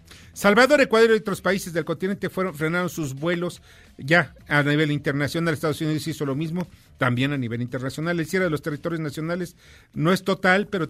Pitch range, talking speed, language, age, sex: 150-185 Hz, 185 wpm, Spanish, 50-69, male